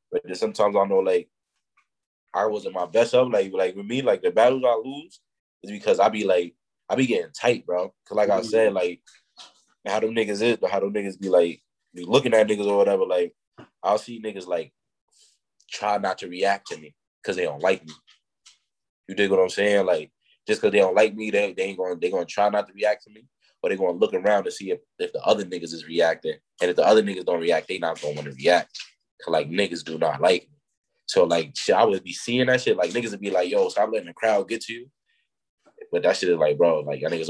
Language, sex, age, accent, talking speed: English, male, 20-39, American, 250 wpm